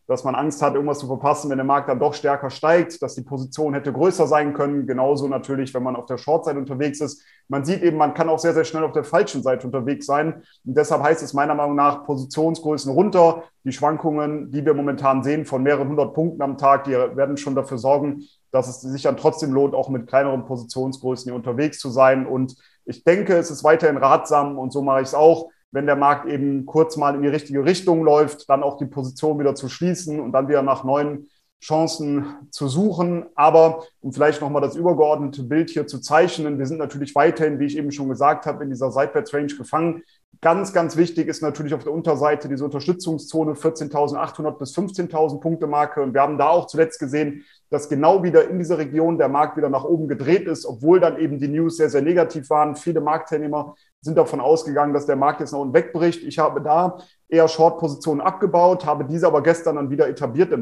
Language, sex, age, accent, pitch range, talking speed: German, male, 30-49, German, 140-160 Hz, 215 wpm